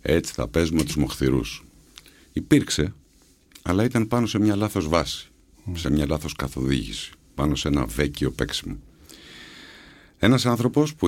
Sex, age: male, 60-79